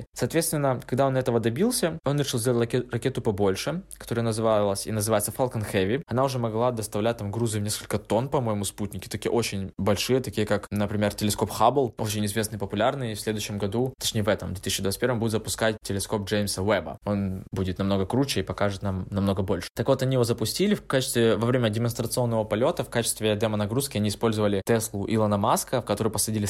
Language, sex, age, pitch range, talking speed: Russian, male, 20-39, 105-120 Hz, 190 wpm